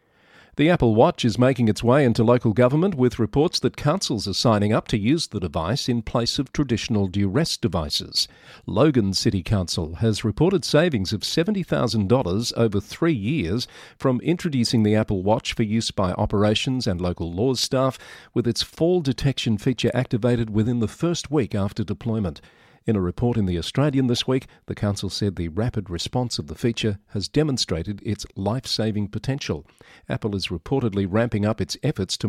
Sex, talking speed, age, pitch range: male, 175 wpm, 50-69, 100-125 Hz